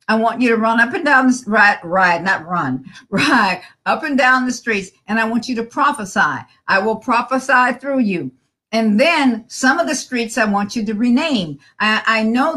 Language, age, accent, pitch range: English, 50-69, American, 230-275 Hz